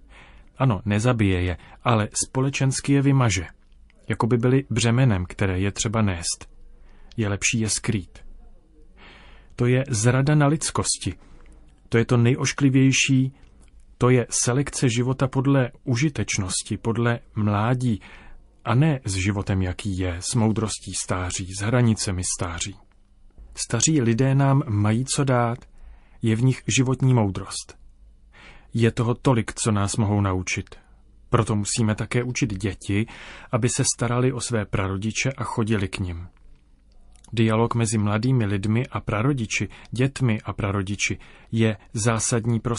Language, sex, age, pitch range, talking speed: Czech, male, 30-49, 100-125 Hz, 130 wpm